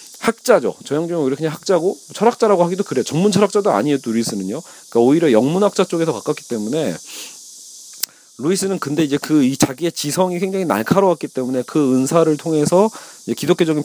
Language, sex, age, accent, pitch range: Korean, male, 40-59, native, 135-190 Hz